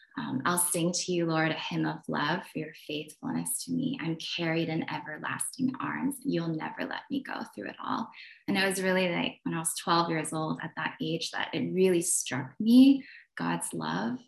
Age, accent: 20-39, American